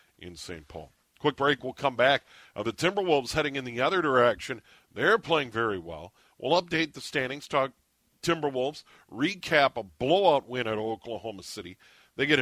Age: 50-69